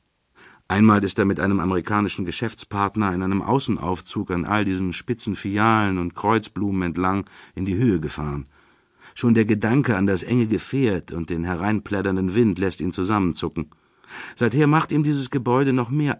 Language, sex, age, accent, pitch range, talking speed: German, male, 50-69, German, 90-115 Hz, 160 wpm